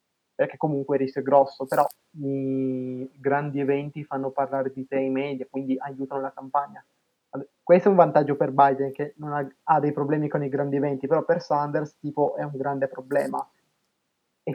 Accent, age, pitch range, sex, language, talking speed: native, 20-39, 135-150 Hz, male, Italian, 185 wpm